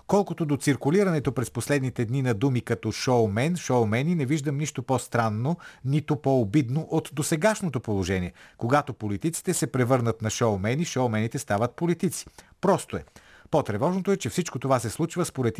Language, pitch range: Bulgarian, 110-155 Hz